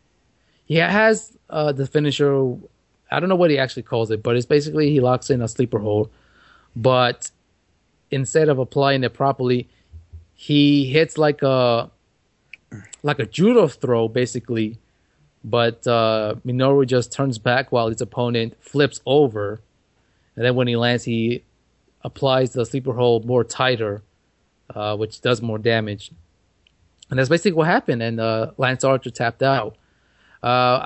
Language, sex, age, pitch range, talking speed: English, male, 20-39, 115-140 Hz, 150 wpm